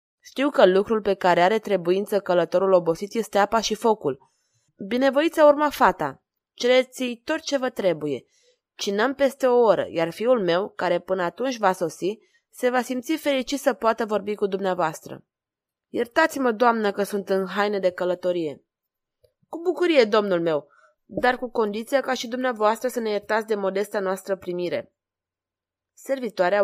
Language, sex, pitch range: Romanian, female, 185-245 Hz